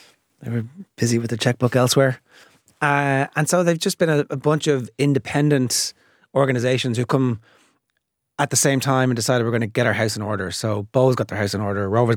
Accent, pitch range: Irish, 110-135 Hz